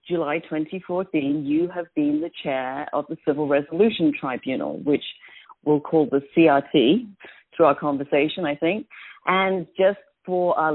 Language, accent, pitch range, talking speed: English, British, 150-185 Hz, 145 wpm